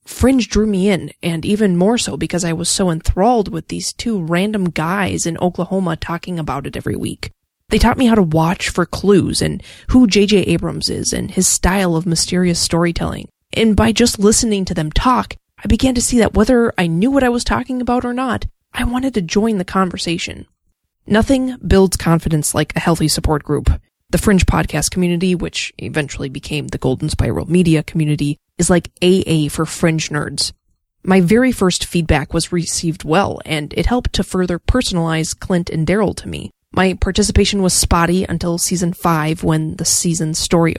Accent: American